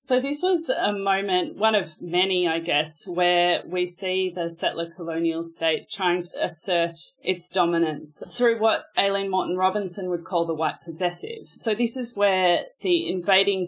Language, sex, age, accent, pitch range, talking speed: English, female, 20-39, Australian, 165-185 Hz, 165 wpm